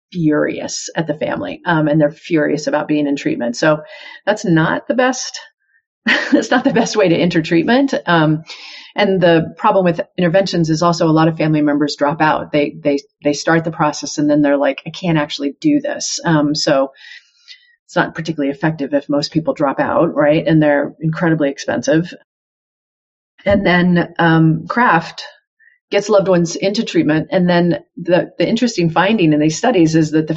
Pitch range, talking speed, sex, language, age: 155-215 Hz, 180 wpm, female, English, 40-59